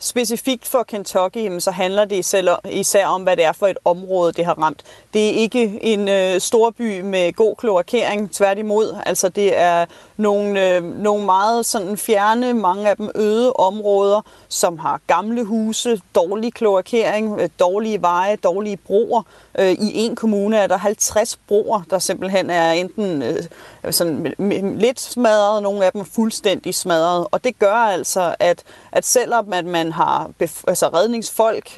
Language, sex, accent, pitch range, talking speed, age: Danish, female, native, 190-230 Hz, 155 wpm, 30-49